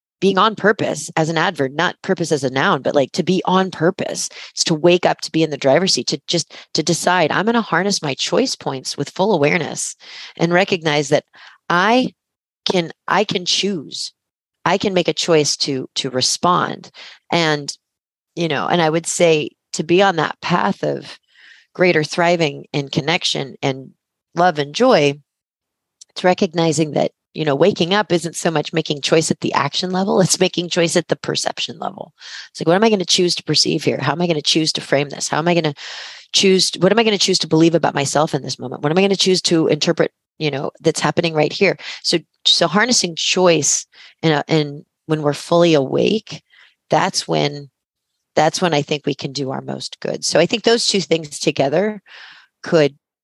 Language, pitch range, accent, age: English, 150-185 Hz, American, 40-59